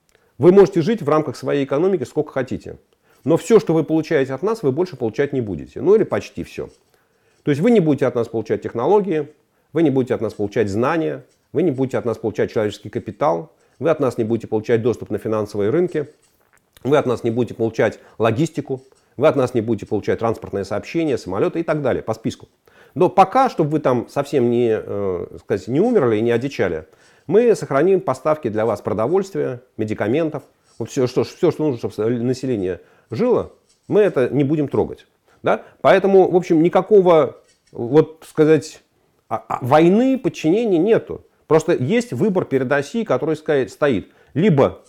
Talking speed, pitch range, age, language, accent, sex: 175 wpm, 115-160 Hz, 40-59, Russian, native, male